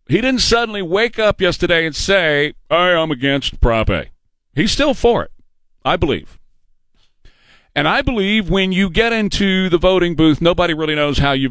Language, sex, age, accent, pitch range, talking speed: English, male, 40-59, American, 105-160 Hz, 175 wpm